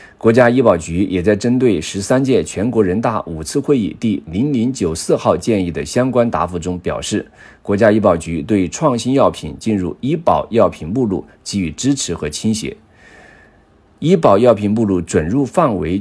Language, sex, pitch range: Chinese, male, 90-125 Hz